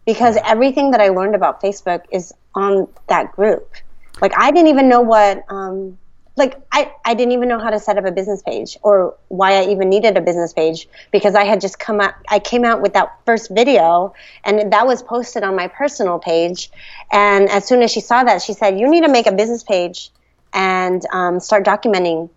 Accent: American